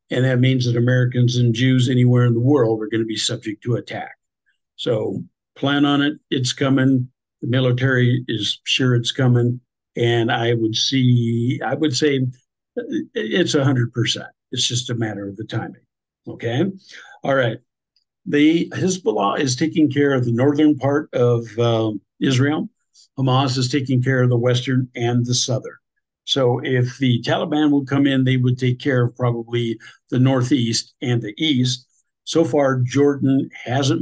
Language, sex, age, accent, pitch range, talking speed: English, male, 60-79, American, 120-140 Hz, 165 wpm